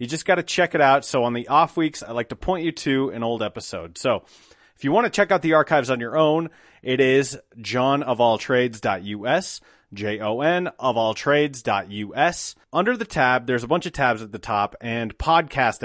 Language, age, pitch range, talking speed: English, 30-49, 115-165 Hz, 200 wpm